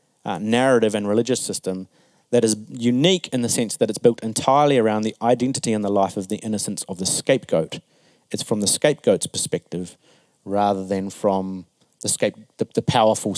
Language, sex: English, male